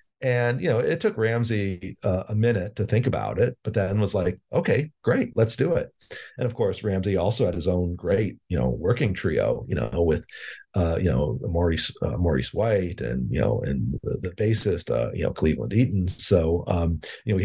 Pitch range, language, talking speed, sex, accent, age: 90-115 Hz, English, 215 wpm, male, American, 40-59